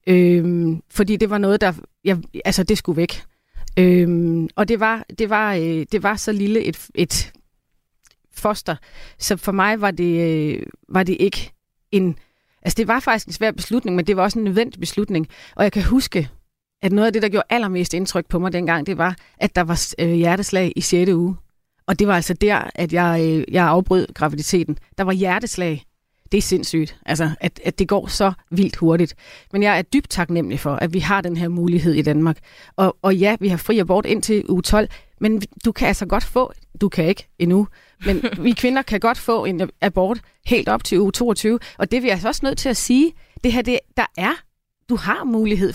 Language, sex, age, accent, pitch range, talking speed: Danish, female, 30-49, native, 170-210 Hz, 205 wpm